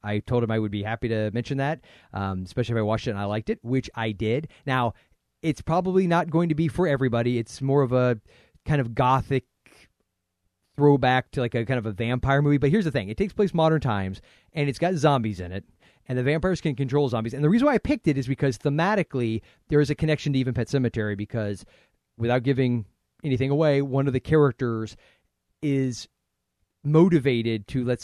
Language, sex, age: English, male, 30-49